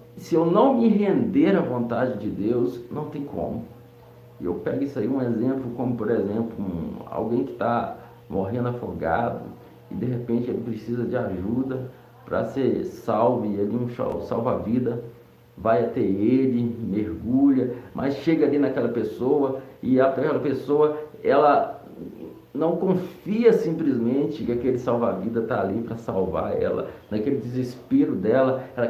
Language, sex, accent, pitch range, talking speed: Portuguese, male, Brazilian, 115-145 Hz, 145 wpm